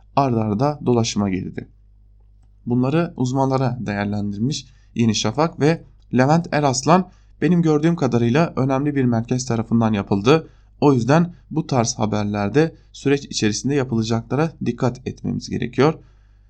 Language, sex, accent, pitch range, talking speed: German, male, Turkish, 110-145 Hz, 115 wpm